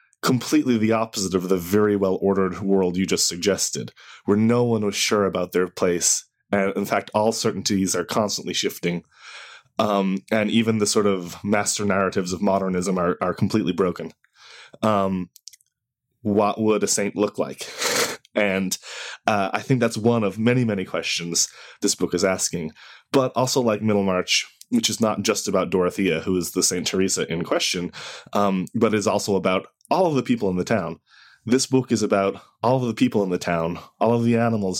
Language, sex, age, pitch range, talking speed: English, male, 20-39, 95-115 Hz, 185 wpm